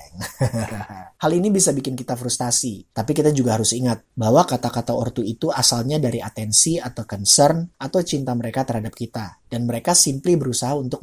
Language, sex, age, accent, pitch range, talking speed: Indonesian, male, 30-49, native, 115-150 Hz, 165 wpm